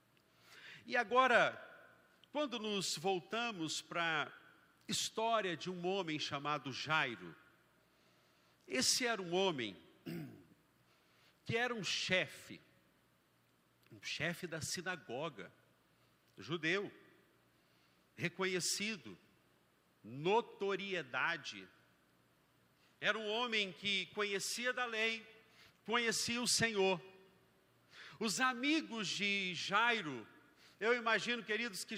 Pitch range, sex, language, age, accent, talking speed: 165-230 Hz, male, Portuguese, 50-69, Brazilian, 85 wpm